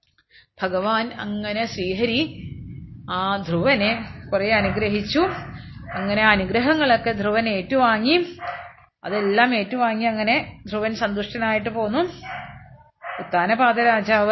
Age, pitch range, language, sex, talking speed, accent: 30-49, 210-260 Hz, Malayalam, female, 65 wpm, native